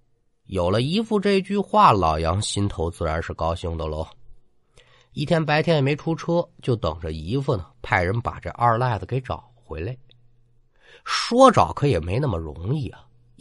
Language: Chinese